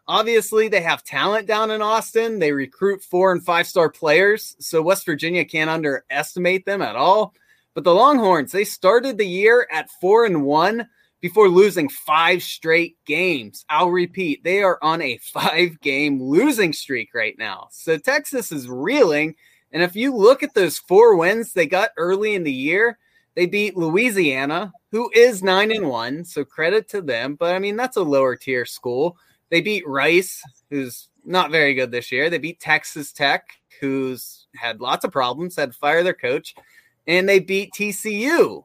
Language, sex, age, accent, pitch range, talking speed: English, male, 20-39, American, 155-215 Hz, 170 wpm